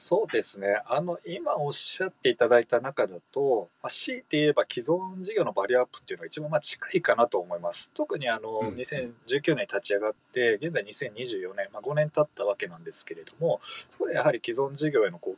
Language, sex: Japanese, male